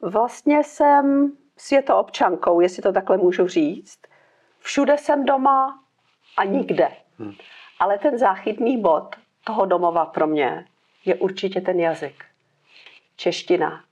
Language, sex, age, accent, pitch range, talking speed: Czech, female, 50-69, native, 165-195 Hz, 115 wpm